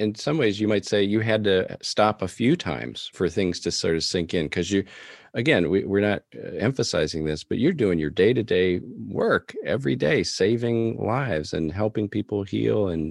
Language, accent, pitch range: English, American, 85-105 Hz